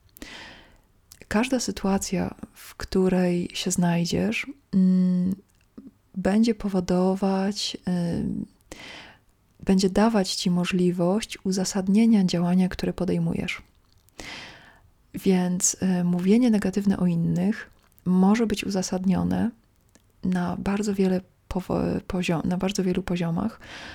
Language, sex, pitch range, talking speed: Polish, female, 180-205 Hz, 75 wpm